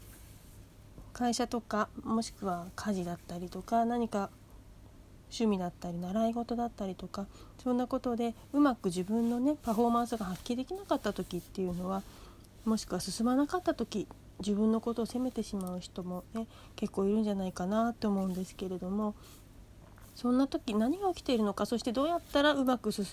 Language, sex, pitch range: Japanese, female, 190-255 Hz